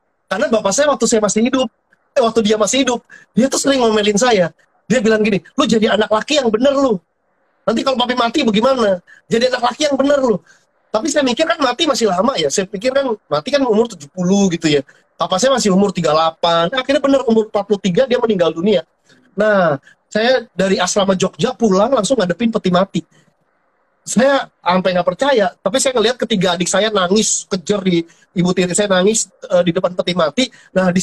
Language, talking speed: Indonesian, 195 wpm